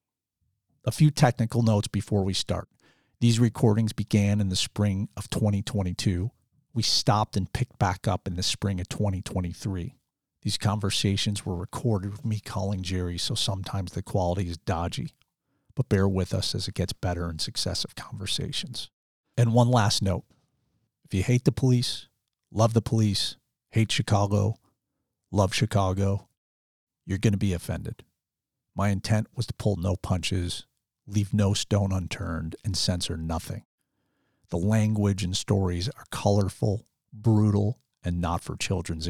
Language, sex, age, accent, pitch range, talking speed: English, male, 50-69, American, 95-115 Hz, 150 wpm